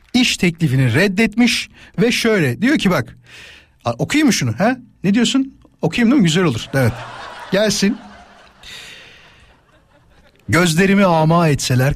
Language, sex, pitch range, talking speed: Turkish, male, 110-175 Hz, 120 wpm